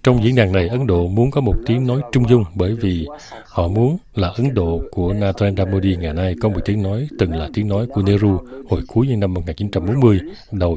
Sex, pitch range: male, 95-120 Hz